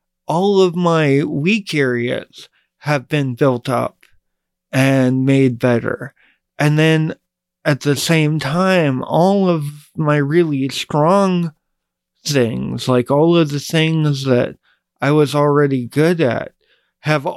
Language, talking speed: English, 125 wpm